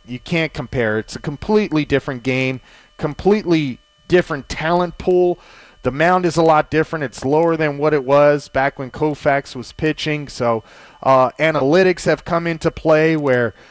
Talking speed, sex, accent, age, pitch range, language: 160 wpm, male, American, 30-49, 140-170 Hz, English